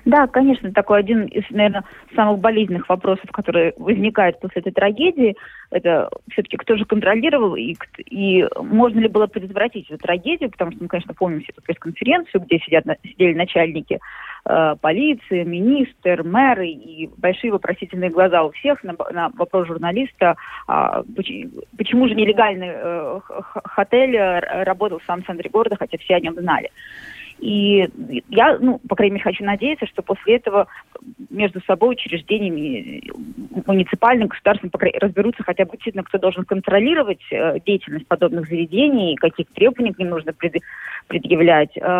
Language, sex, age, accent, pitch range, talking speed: Russian, female, 20-39, native, 175-230 Hz, 150 wpm